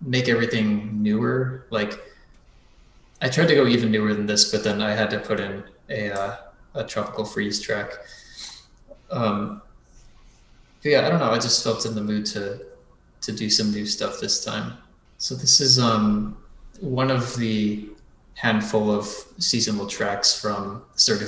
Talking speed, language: 160 wpm, English